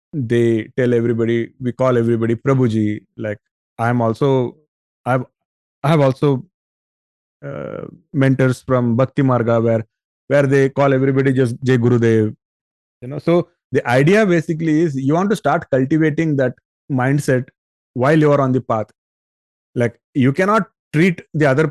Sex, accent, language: male, Indian, English